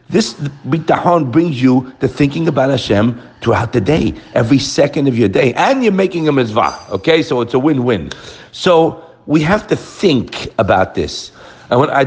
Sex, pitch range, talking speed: male, 125-170 Hz, 175 wpm